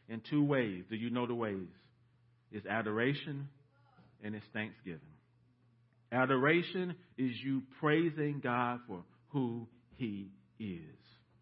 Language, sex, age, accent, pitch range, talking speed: English, male, 50-69, American, 115-135 Hz, 115 wpm